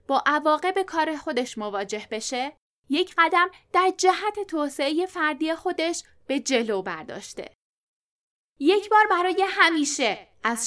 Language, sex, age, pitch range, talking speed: Persian, female, 10-29, 255-365 Hz, 125 wpm